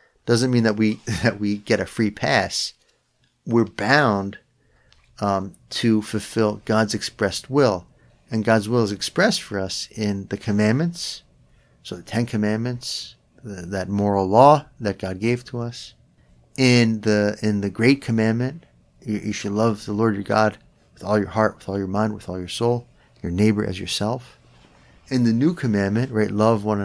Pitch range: 105-125 Hz